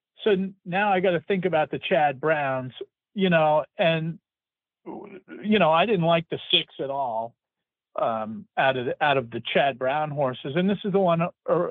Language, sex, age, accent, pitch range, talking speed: English, male, 40-59, American, 125-170 Hz, 195 wpm